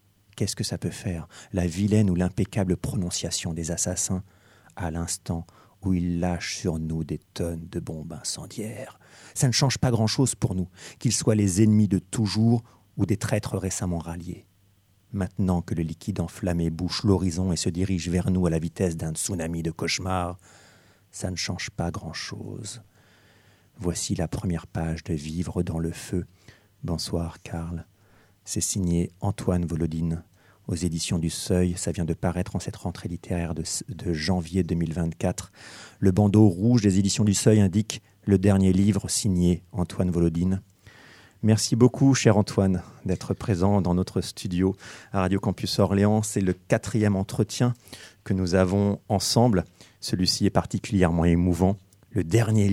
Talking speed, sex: 155 wpm, male